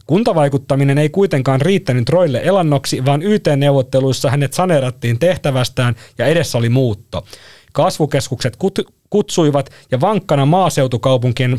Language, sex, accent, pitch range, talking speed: Finnish, male, native, 120-175 Hz, 105 wpm